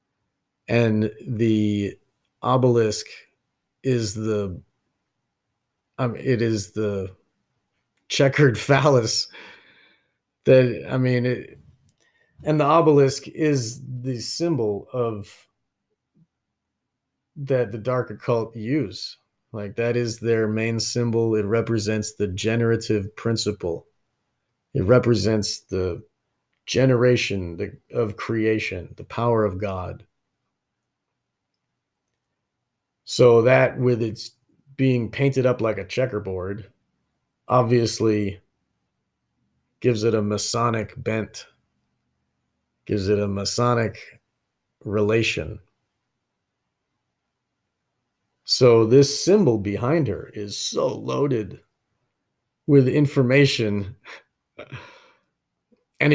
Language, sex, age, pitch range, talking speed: English, male, 40-59, 105-130 Hz, 85 wpm